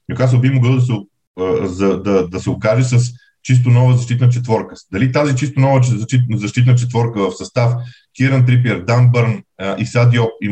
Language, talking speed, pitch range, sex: Bulgarian, 155 wpm, 110-130 Hz, male